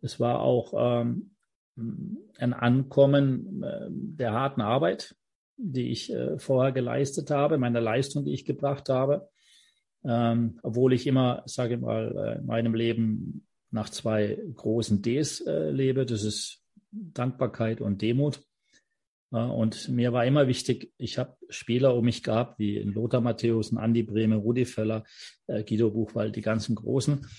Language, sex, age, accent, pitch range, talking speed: German, male, 40-59, German, 110-140 Hz, 150 wpm